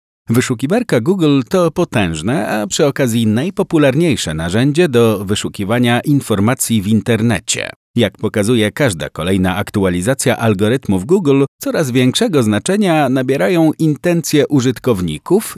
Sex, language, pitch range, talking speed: male, Polish, 105-155 Hz, 105 wpm